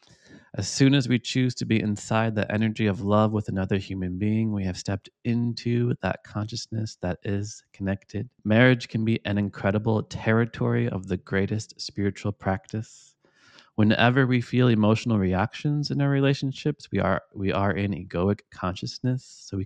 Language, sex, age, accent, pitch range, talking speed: English, male, 30-49, American, 95-120 Hz, 160 wpm